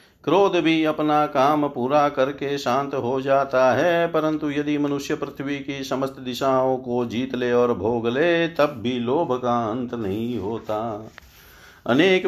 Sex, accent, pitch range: male, native, 130-155 Hz